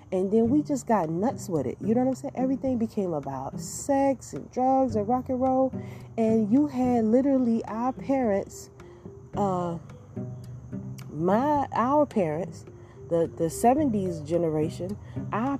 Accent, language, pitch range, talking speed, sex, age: American, English, 170-235 Hz, 145 wpm, female, 30-49